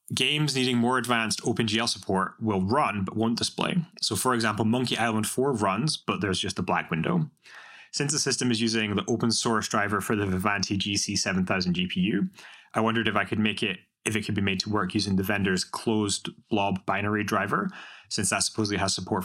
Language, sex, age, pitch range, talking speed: English, male, 20-39, 100-130 Hz, 200 wpm